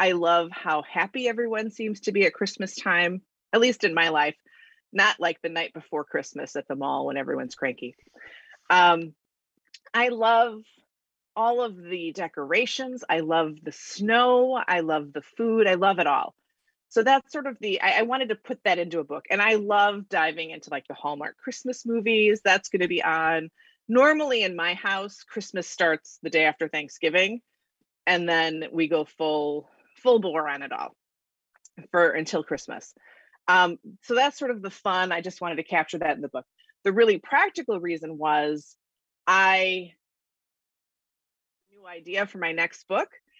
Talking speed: 175 wpm